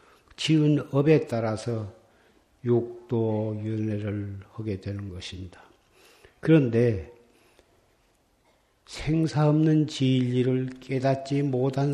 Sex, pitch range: male, 110-145 Hz